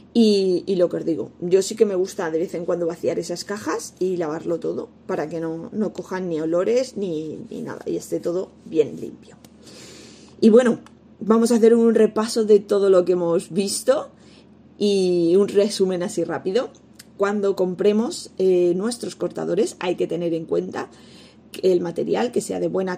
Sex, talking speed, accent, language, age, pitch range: female, 185 wpm, Spanish, Spanish, 20-39, 175-210 Hz